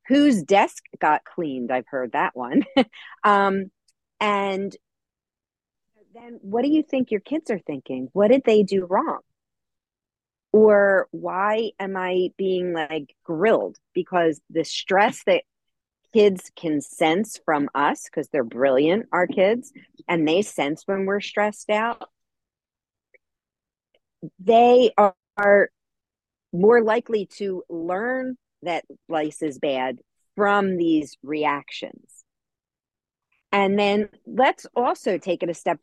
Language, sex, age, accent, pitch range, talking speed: English, female, 40-59, American, 170-235 Hz, 120 wpm